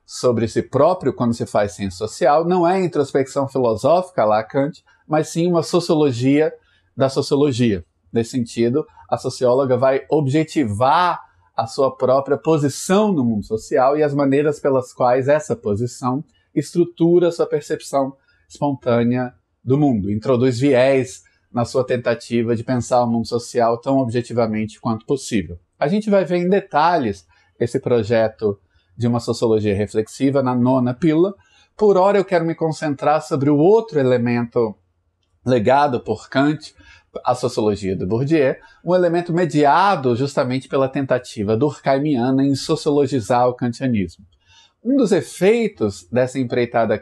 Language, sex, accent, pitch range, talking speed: Portuguese, male, Brazilian, 115-150 Hz, 140 wpm